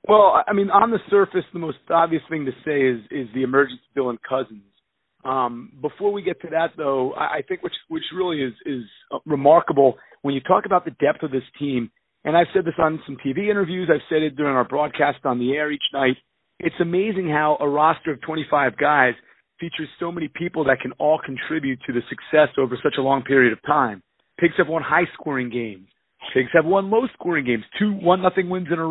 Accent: American